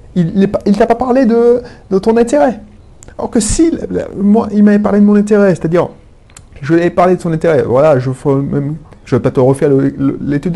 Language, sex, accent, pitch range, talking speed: French, male, French, 135-195 Hz, 210 wpm